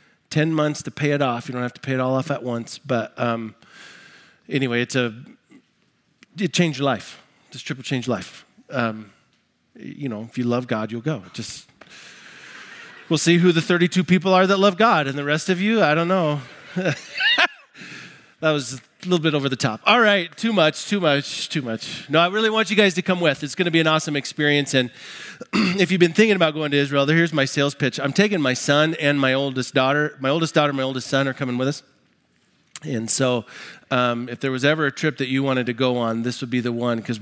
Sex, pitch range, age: male, 125-175 Hz, 30-49